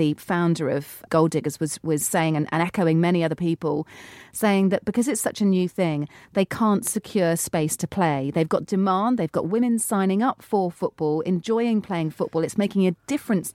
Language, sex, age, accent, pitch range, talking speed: English, female, 40-59, British, 165-205 Hz, 200 wpm